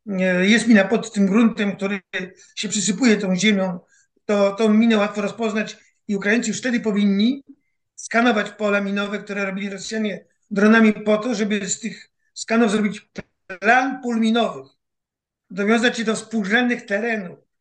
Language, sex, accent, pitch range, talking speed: Polish, male, native, 205-235 Hz, 140 wpm